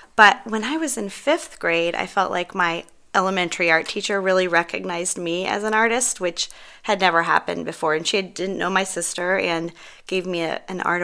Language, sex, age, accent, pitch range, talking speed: English, female, 20-39, American, 160-190 Hz, 195 wpm